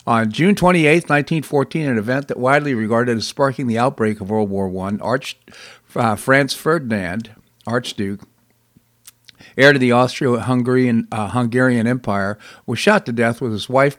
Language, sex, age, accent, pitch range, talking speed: English, male, 50-69, American, 110-130 Hz, 145 wpm